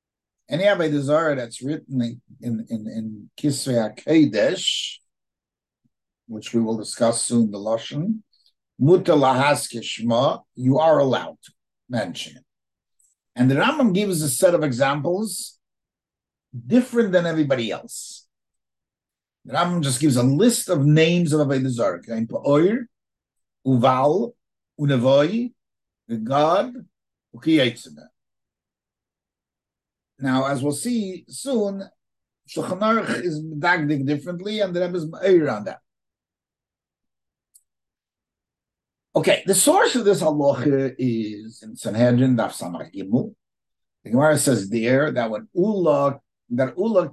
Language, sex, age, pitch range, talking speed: English, male, 50-69, 120-180 Hz, 110 wpm